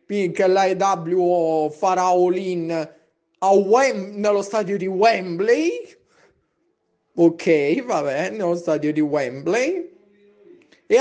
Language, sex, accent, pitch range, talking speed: Italian, male, native, 175-265 Hz, 95 wpm